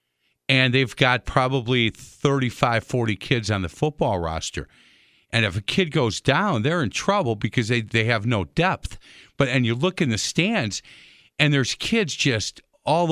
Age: 50-69